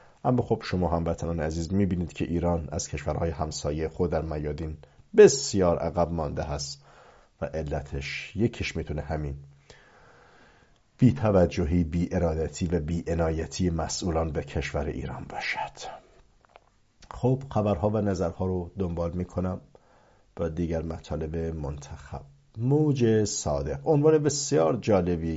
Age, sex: 50-69, male